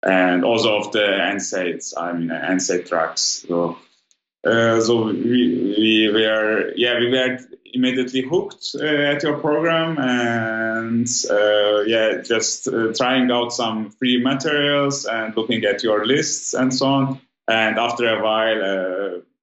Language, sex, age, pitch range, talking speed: English, male, 20-39, 100-125 Hz, 145 wpm